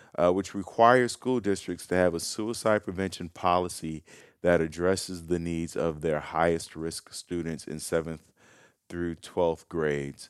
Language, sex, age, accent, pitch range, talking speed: English, male, 40-59, American, 80-95 Hz, 145 wpm